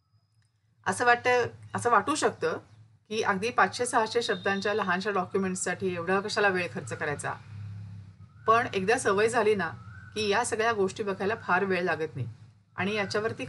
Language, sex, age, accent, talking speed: Marathi, female, 40-59, native, 145 wpm